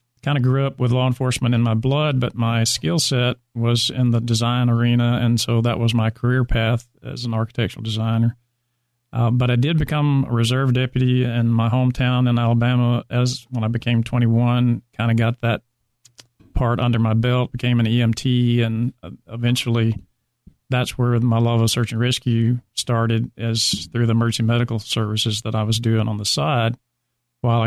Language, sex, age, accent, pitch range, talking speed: English, male, 40-59, American, 115-125 Hz, 185 wpm